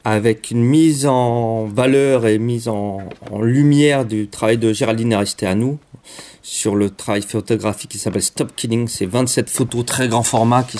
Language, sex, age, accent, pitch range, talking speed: French, male, 40-59, French, 105-125 Hz, 180 wpm